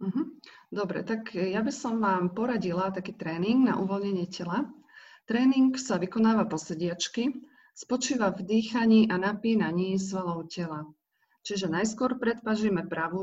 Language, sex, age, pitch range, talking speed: Slovak, female, 40-59, 180-230 Hz, 125 wpm